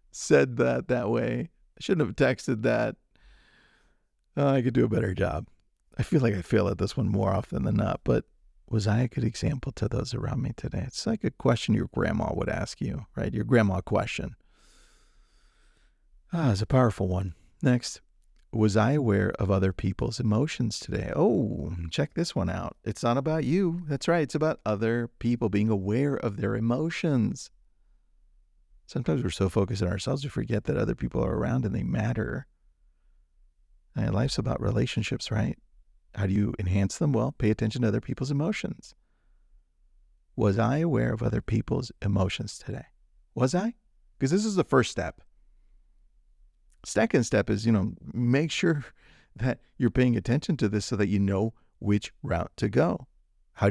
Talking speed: 175 wpm